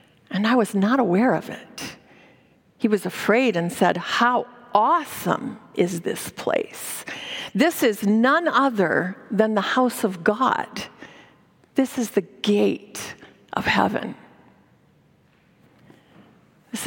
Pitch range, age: 205-280 Hz, 50-69